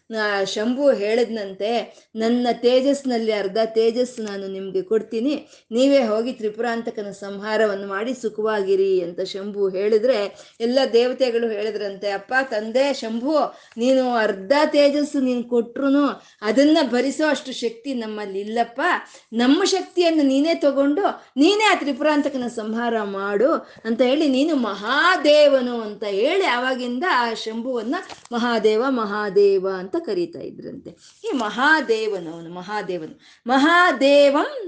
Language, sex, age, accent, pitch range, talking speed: Kannada, female, 20-39, native, 210-280 Hz, 100 wpm